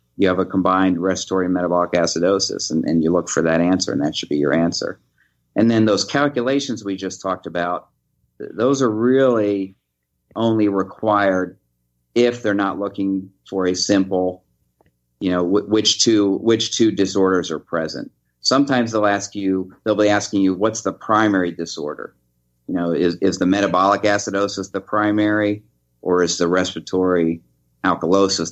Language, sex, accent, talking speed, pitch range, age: English, male, American, 160 wpm, 85-100 Hz, 50-69